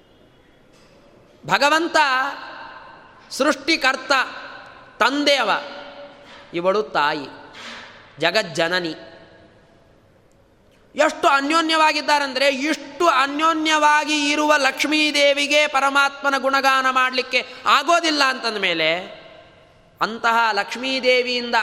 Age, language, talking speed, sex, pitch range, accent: 20-39, Kannada, 55 wpm, male, 225-295 Hz, native